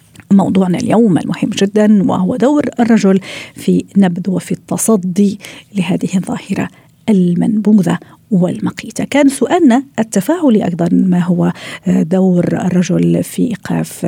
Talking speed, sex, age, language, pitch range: 105 wpm, female, 50-69, Arabic, 175-210 Hz